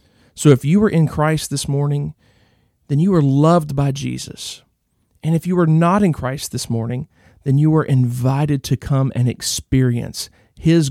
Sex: male